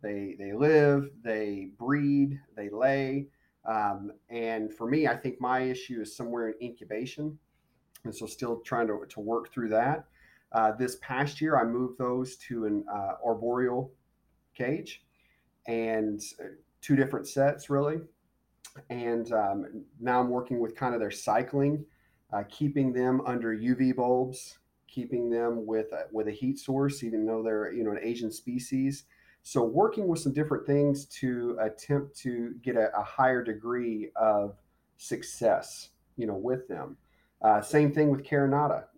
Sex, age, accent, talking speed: male, 30-49, American, 155 wpm